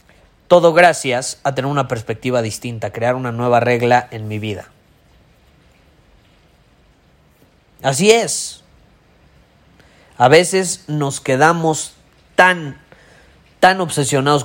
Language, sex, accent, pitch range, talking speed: Spanish, male, Mexican, 120-145 Hz, 95 wpm